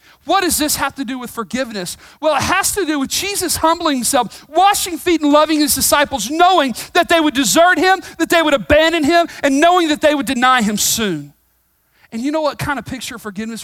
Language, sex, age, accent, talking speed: English, male, 40-59, American, 225 wpm